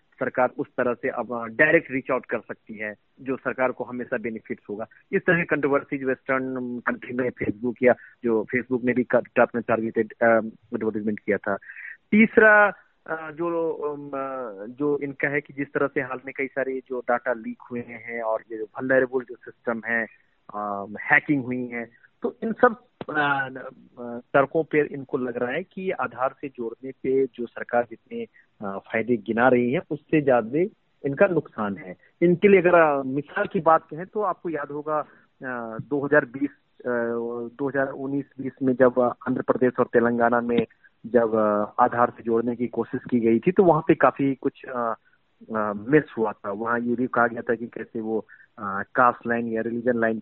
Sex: male